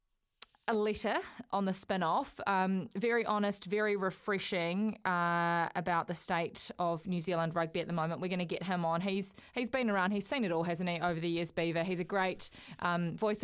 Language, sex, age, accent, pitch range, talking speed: English, female, 20-39, Australian, 175-200 Hz, 205 wpm